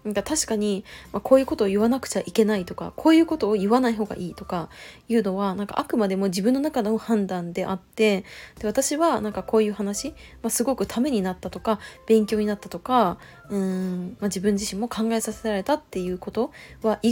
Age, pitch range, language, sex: 20-39, 195-245 Hz, Japanese, female